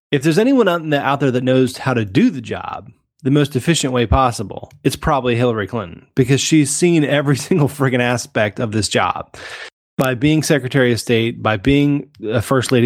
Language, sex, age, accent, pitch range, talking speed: English, male, 20-39, American, 115-135 Hz, 205 wpm